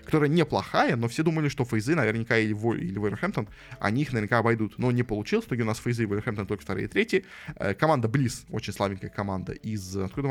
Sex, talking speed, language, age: male, 200 wpm, Russian, 20-39